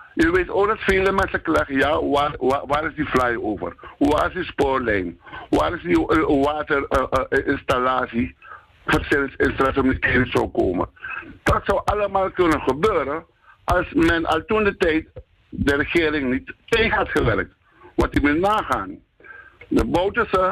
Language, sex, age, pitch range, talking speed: Dutch, male, 60-79, 130-190 Hz, 150 wpm